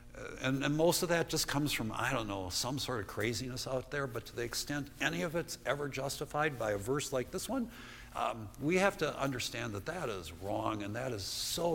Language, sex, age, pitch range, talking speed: English, male, 60-79, 95-140 Hz, 230 wpm